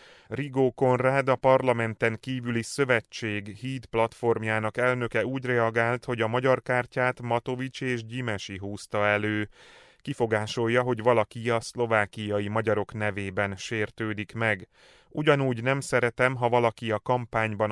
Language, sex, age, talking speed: Hungarian, male, 30-49, 120 wpm